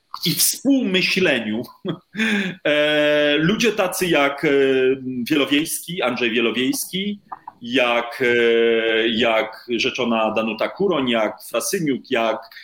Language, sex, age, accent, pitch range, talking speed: Polish, male, 40-59, native, 130-190 Hz, 75 wpm